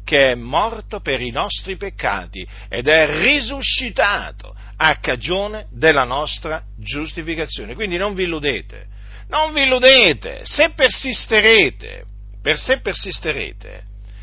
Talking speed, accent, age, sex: 105 wpm, native, 50-69, male